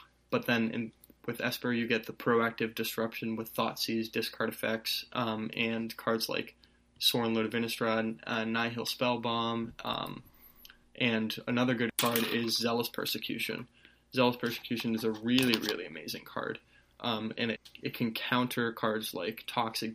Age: 20-39